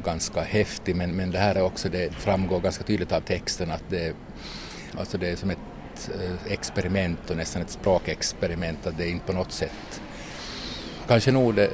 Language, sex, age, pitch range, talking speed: Finnish, male, 50-69, 85-95 Hz, 185 wpm